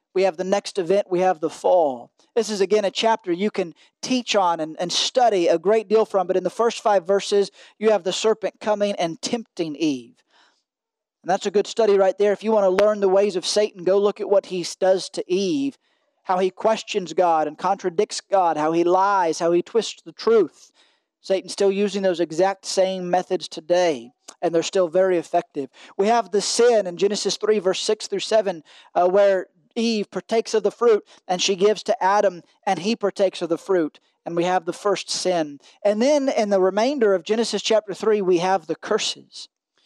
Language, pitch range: English, 180-220 Hz